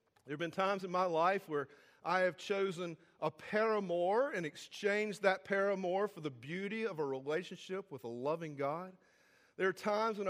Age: 40-59